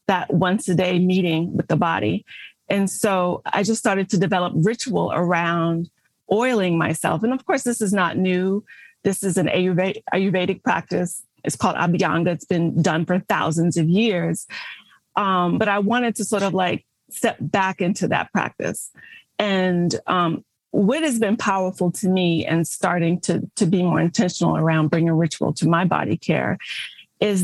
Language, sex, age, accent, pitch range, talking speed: English, female, 30-49, American, 180-210 Hz, 170 wpm